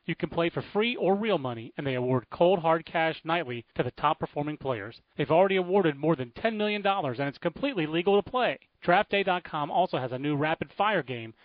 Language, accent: English, American